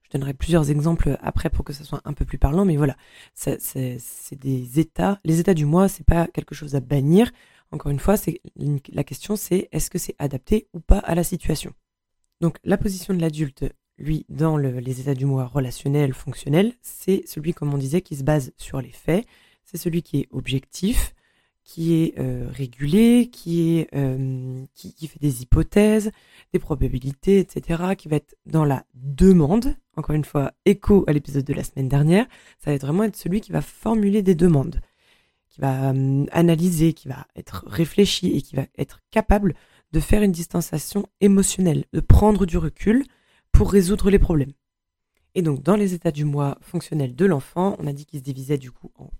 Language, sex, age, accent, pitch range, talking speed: French, female, 20-39, French, 140-185 Hz, 200 wpm